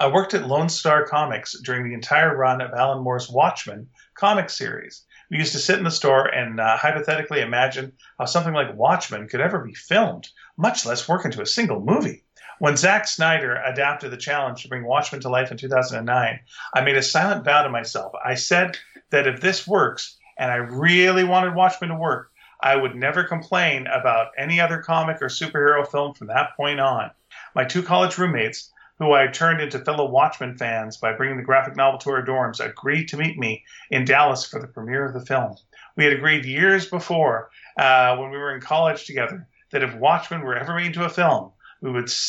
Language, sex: English, male